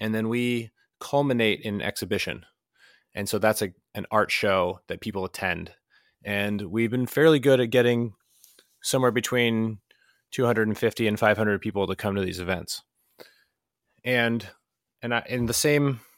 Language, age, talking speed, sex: English, 20-39, 150 wpm, male